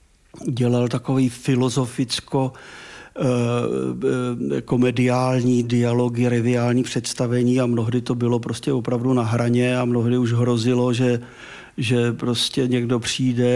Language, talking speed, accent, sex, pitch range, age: Czech, 100 wpm, native, male, 125-140 Hz, 50-69